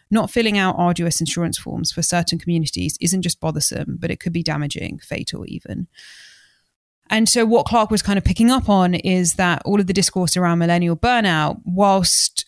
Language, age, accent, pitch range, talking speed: English, 20-39, British, 160-190 Hz, 190 wpm